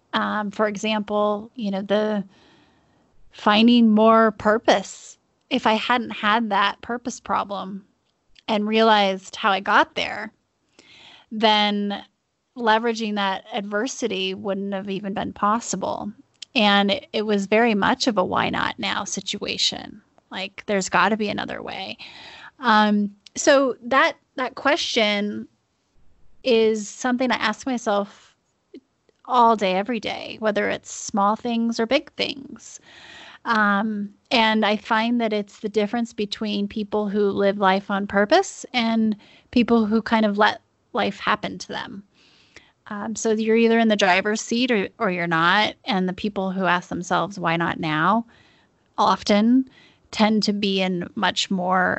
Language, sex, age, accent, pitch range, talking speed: English, female, 10-29, American, 200-230 Hz, 145 wpm